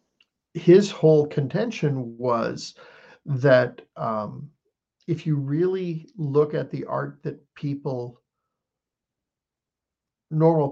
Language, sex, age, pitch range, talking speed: English, male, 50-69, 135-165 Hz, 90 wpm